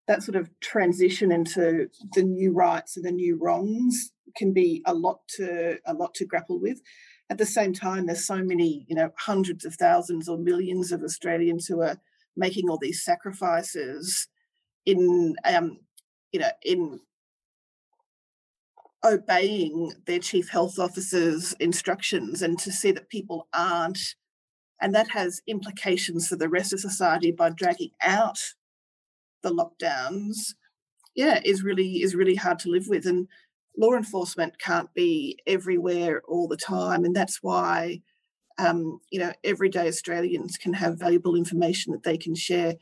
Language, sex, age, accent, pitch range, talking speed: English, female, 40-59, Australian, 170-230 Hz, 155 wpm